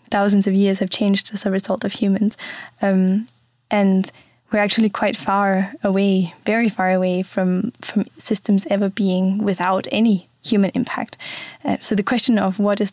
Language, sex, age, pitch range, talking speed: German, female, 10-29, 195-215 Hz, 165 wpm